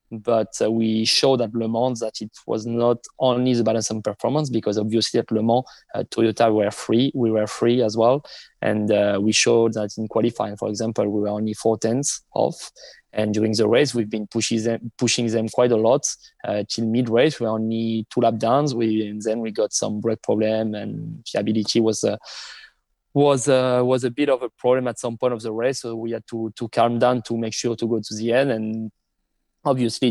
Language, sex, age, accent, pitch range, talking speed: English, male, 20-39, French, 110-120 Hz, 220 wpm